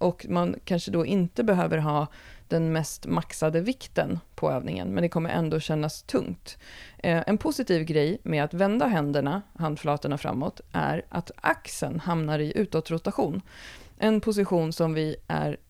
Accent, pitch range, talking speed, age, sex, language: native, 150-185 Hz, 150 wpm, 30-49, female, Swedish